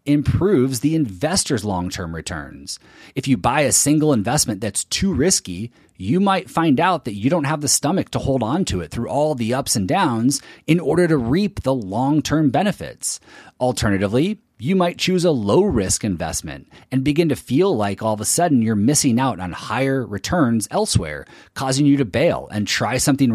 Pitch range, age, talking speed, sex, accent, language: 110-150 Hz, 30-49, 195 wpm, male, American, English